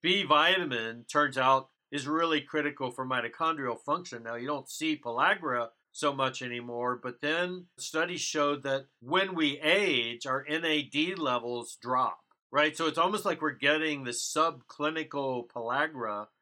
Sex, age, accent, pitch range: male, 50-69, American, 130-160 Hz